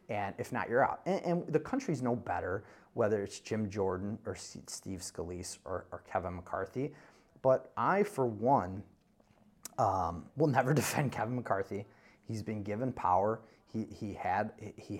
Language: English